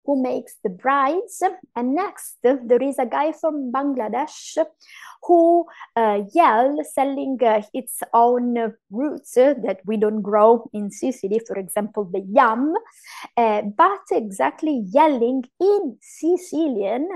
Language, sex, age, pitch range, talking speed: English, female, 20-39, 215-290 Hz, 120 wpm